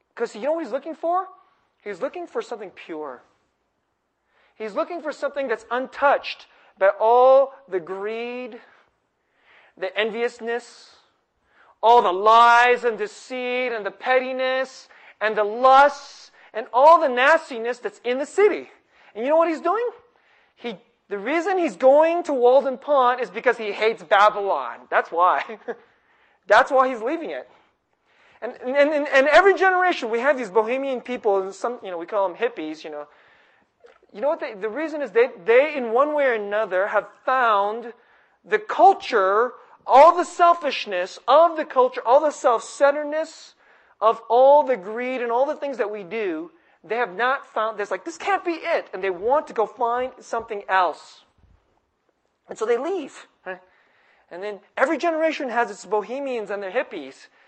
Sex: male